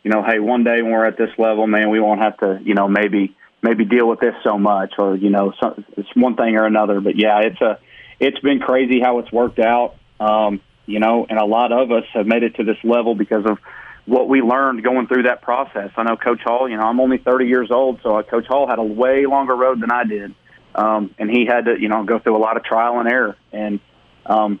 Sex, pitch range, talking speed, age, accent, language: male, 110-125 Hz, 255 wpm, 30-49, American, English